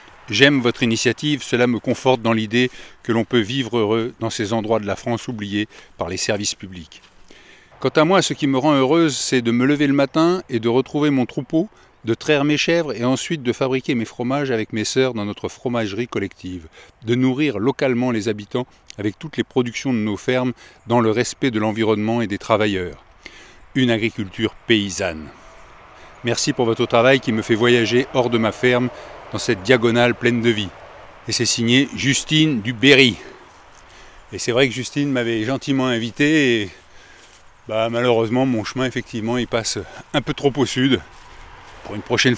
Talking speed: 185 wpm